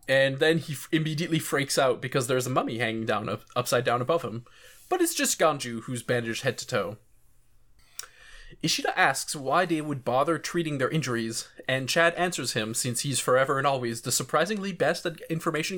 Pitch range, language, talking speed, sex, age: 125-170 Hz, English, 190 wpm, male, 20-39